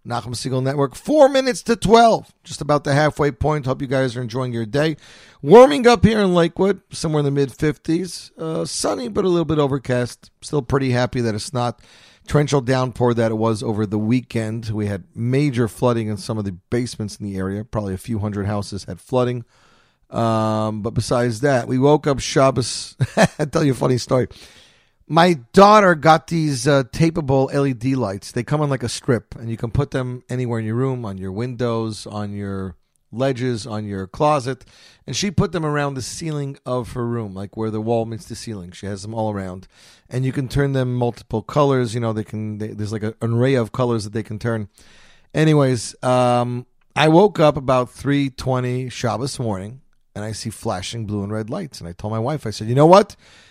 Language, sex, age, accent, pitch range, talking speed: English, male, 40-59, American, 110-145 Hz, 210 wpm